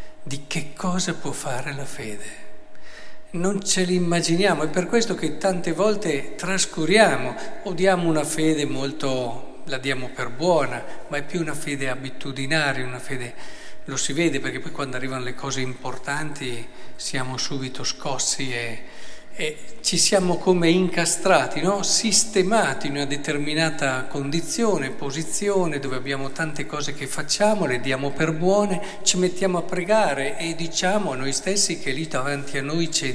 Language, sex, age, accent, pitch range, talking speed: Italian, male, 50-69, native, 140-195 Hz, 155 wpm